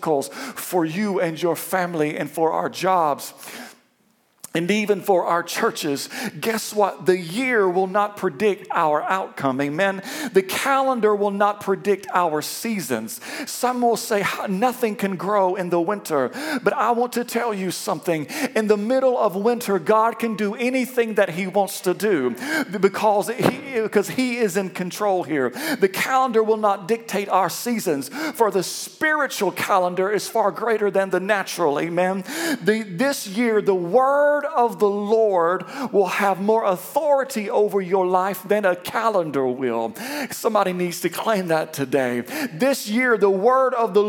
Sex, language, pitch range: male, English, 185-235 Hz